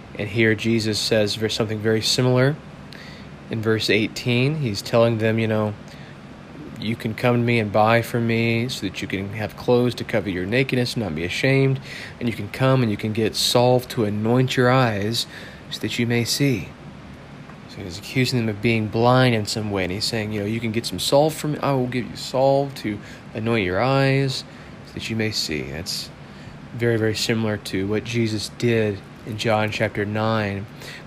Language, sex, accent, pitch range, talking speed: English, male, American, 105-120 Hz, 200 wpm